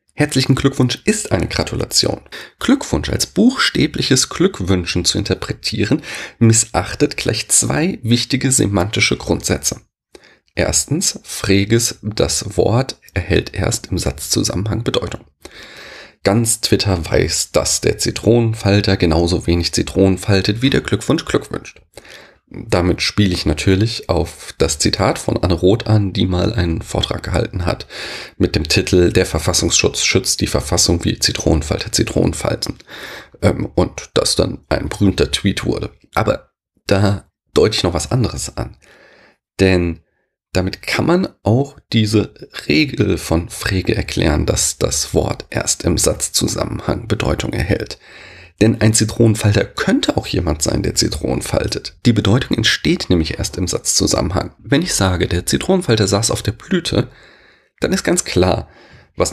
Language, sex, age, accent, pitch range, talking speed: German, male, 30-49, German, 90-115 Hz, 135 wpm